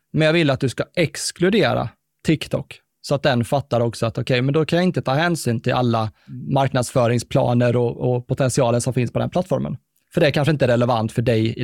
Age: 20-39